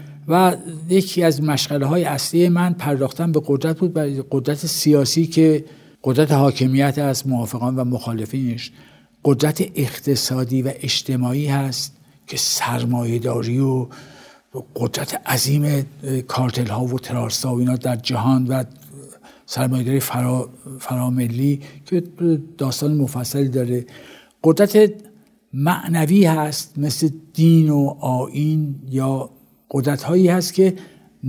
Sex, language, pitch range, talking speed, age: male, Persian, 135-160 Hz, 110 wpm, 60-79